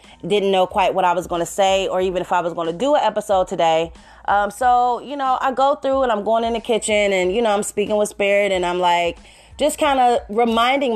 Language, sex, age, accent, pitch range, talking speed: English, female, 30-49, American, 195-255 Hz, 255 wpm